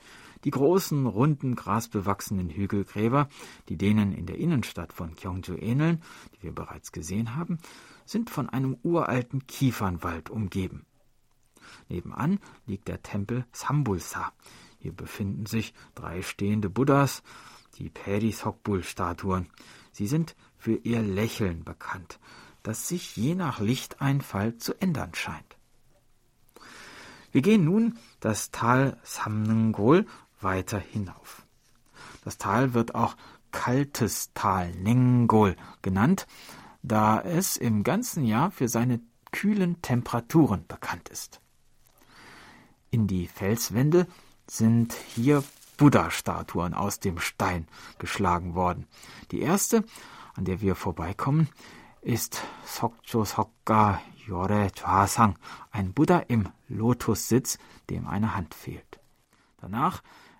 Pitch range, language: 100-135 Hz, German